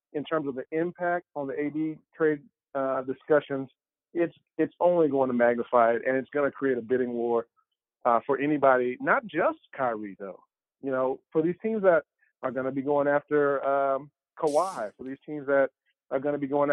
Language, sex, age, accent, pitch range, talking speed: English, male, 40-59, American, 120-150 Hz, 200 wpm